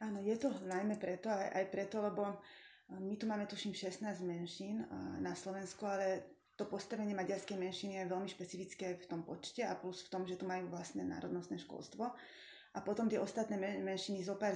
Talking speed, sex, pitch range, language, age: 175 wpm, female, 180-195 Hz, Slovak, 20-39